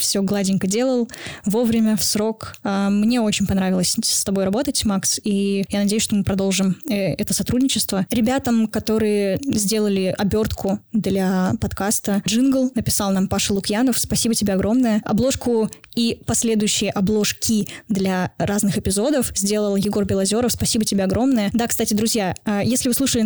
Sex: female